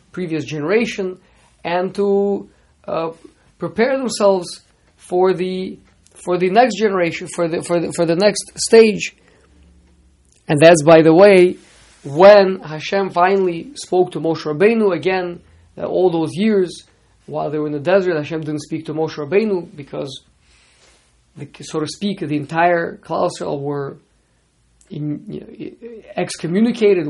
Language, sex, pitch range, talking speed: English, male, 150-200 Hz, 140 wpm